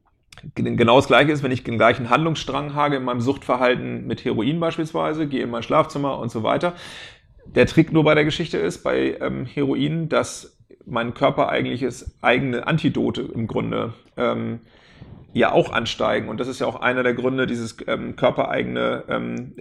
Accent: German